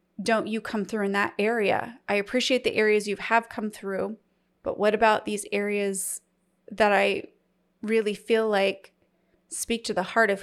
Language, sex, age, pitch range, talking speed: English, female, 30-49, 195-225 Hz, 175 wpm